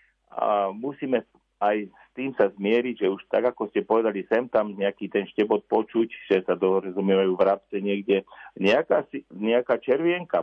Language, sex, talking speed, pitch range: Slovak, male, 160 wpm, 100-115 Hz